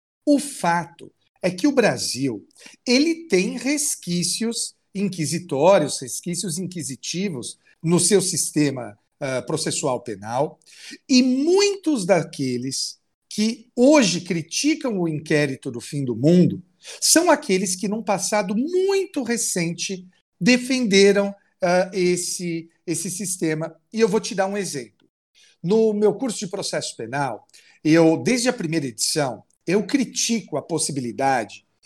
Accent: Brazilian